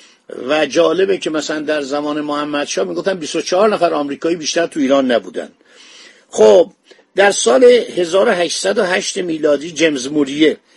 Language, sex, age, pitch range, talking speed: Persian, male, 50-69, 140-185 Hz, 125 wpm